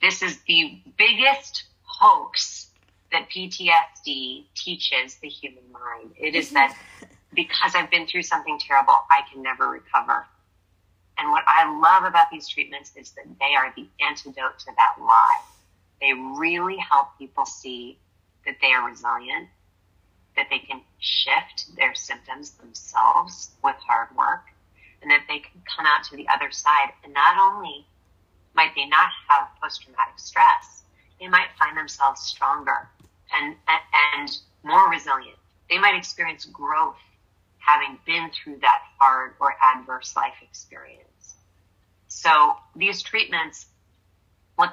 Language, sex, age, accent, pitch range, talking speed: English, female, 30-49, American, 110-170 Hz, 140 wpm